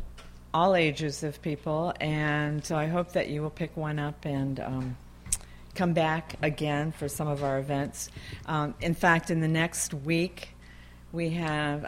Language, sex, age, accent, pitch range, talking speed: English, female, 50-69, American, 140-160 Hz, 165 wpm